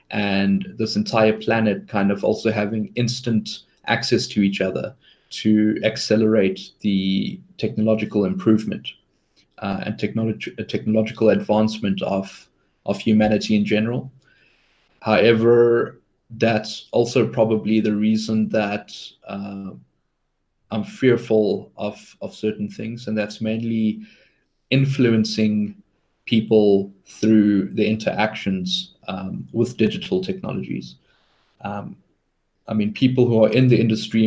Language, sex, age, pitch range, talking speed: English, male, 20-39, 105-115 Hz, 110 wpm